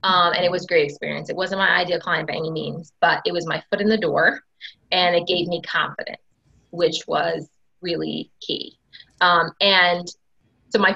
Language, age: English, 20-39